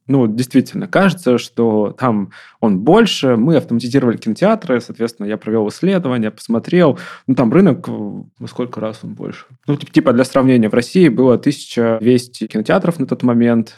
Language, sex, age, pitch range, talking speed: Russian, male, 20-39, 115-135 Hz, 150 wpm